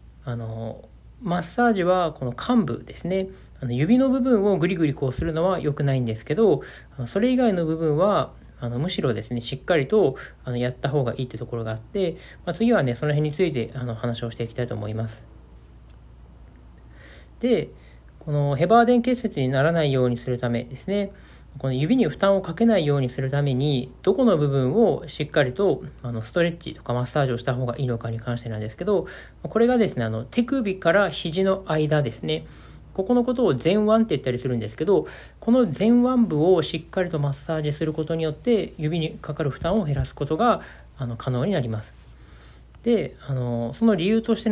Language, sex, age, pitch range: Japanese, male, 40-59, 120-190 Hz